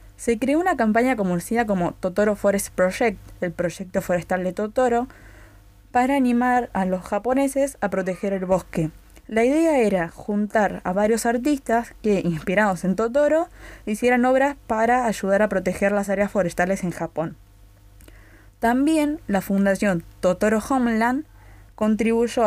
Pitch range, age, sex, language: 185-255 Hz, 20-39, female, Spanish